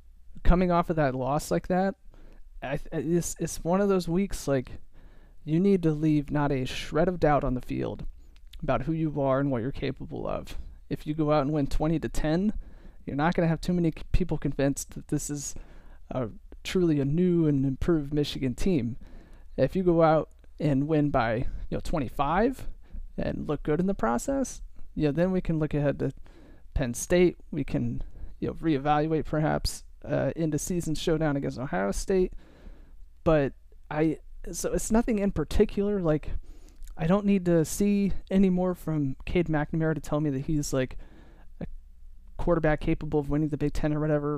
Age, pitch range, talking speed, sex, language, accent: 30-49, 135-165 Hz, 190 wpm, male, English, American